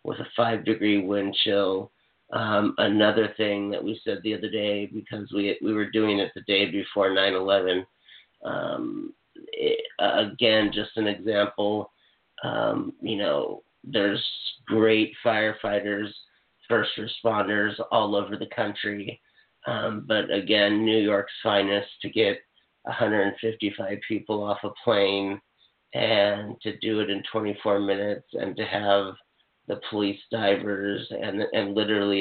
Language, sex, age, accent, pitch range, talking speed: English, male, 40-59, American, 100-110 Hz, 130 wpm